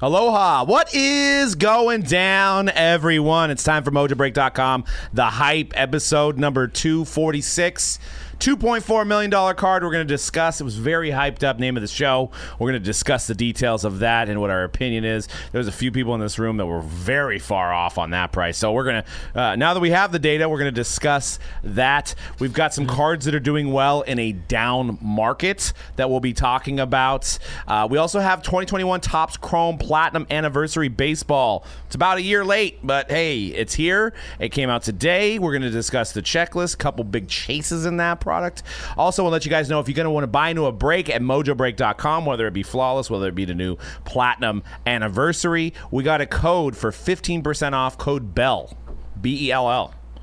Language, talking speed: English, 200 wpm